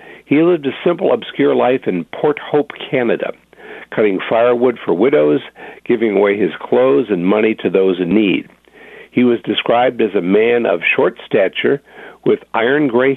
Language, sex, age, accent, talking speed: English, male, 50-69, American, 160 wpm